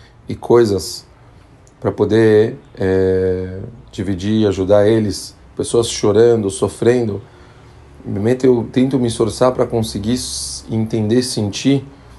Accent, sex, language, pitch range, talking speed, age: Brazilian, male, Portuguese, 100-120 Hz, 105 wpm, 40-59